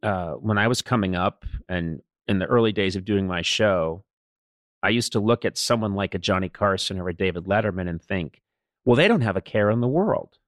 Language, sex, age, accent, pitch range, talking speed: English, male, 40-59, American, 105-140 Hz, 230 wpm